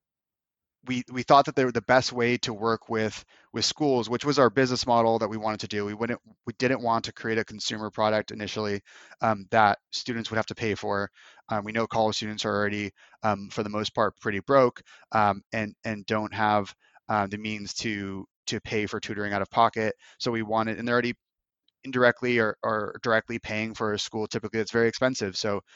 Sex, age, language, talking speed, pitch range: male, 20-39, English, 215 wpm, 105-120 Hz